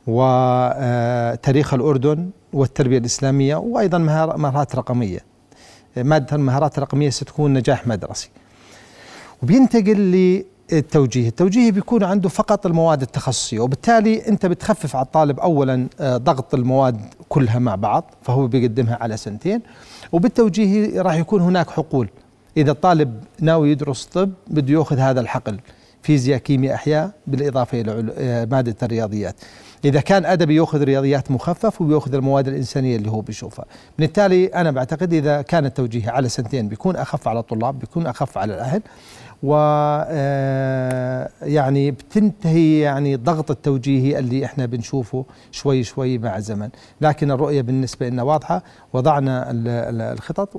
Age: 40-59